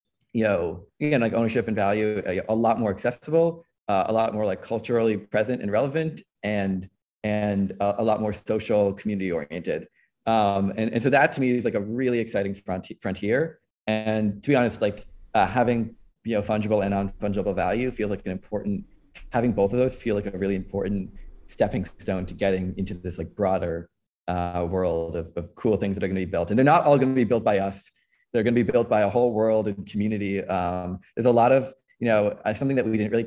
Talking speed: 220 wpm